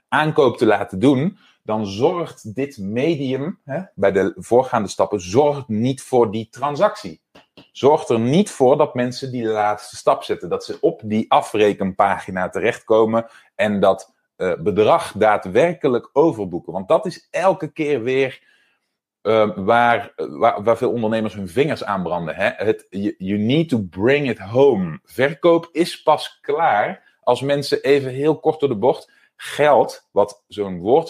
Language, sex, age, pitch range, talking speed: Dutch, male, 30-49, 110-160 Hz, 160 wpm